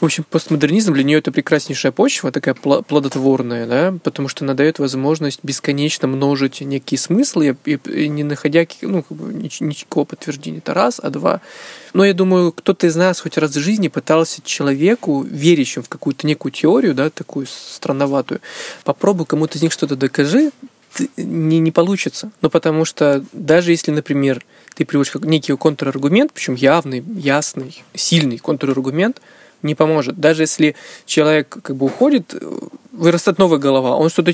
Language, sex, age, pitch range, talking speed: Russian, male, 20-39, 145-175 Hz, 155 wpm